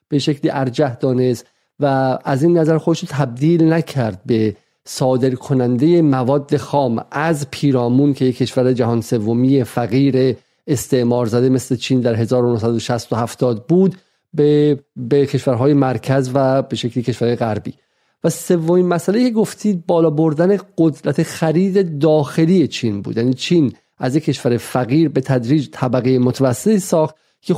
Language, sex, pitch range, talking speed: Persian, male, 125-160 Hz, 145 wpm